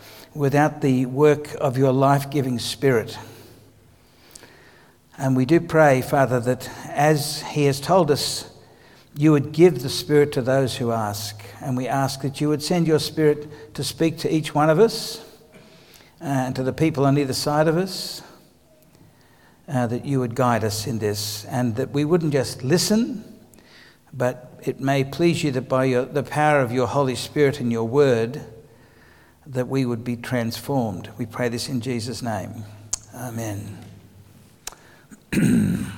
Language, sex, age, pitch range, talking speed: English, male, 60-79, 120-150 Hz, 155 wpm